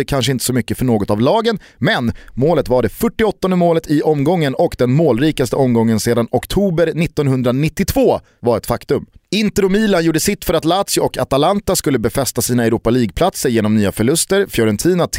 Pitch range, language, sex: 125-170 Hz, Swedish, male